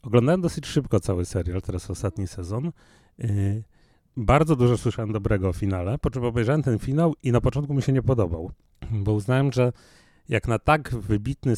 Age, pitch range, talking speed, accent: 30-49, 115-155 Hz, 170 wpm, native